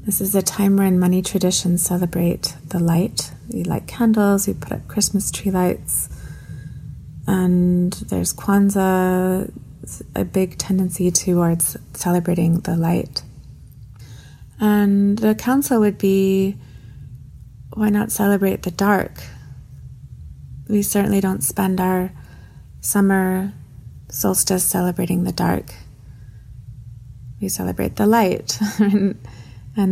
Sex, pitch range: female, 125-195 Hz